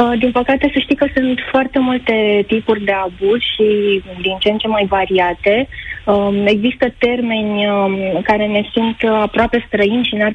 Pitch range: 185-220 Hz